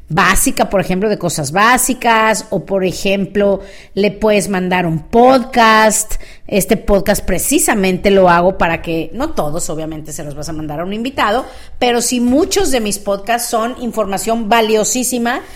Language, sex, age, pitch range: Spanish, female, 40-59, 180-235 Hz